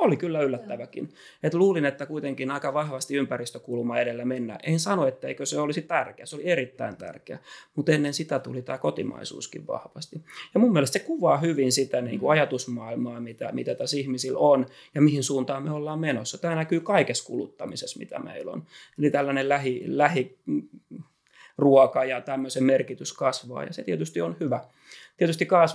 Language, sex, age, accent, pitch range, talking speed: Finnish, male, 30-49, native, 130-150 Hz, 165 wpm